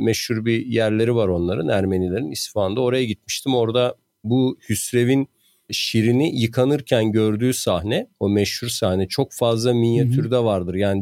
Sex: male